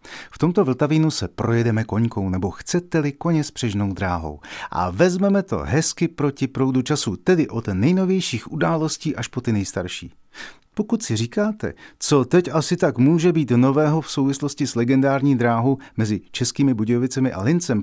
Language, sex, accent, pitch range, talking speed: Czech, male, native, 105-150 Hz, 160 wpm